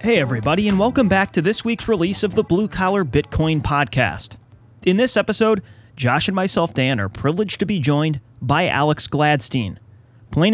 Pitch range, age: 125-180 Hz, 30-49